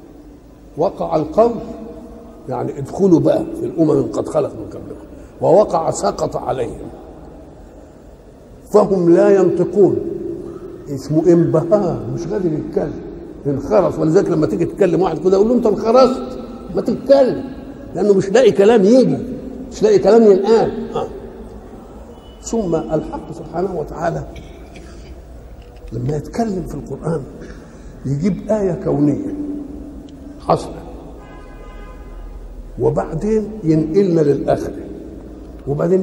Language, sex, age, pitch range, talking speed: Arabic, male, 50-69, 160-260 Hz, 105 wpm